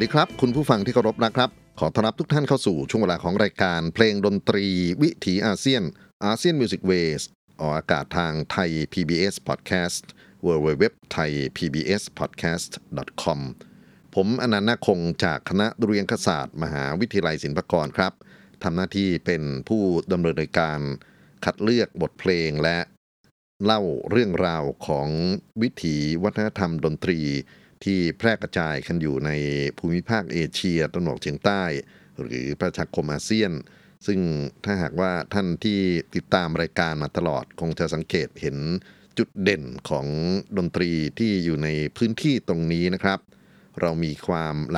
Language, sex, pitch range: Thai, male, 80-100 Hz